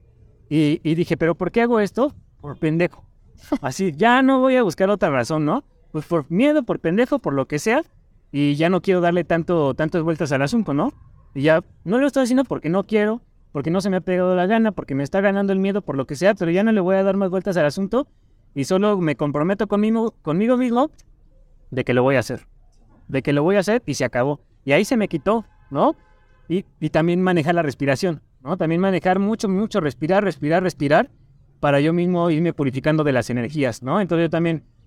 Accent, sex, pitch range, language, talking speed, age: Mexican, male, 140-190 Hz, Spanish, 225 wpm, 30-49